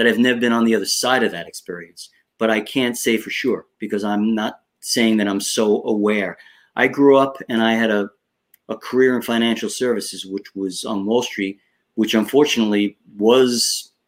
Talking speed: 190 wpm